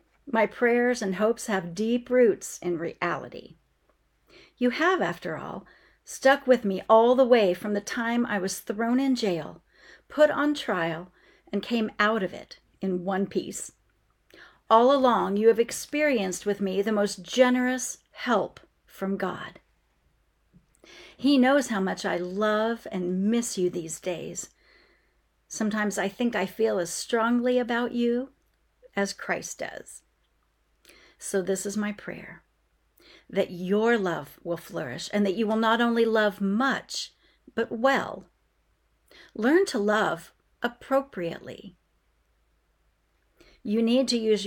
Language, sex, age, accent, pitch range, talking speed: English, female, 40-59, American, 190-245 Hz, 140 wpm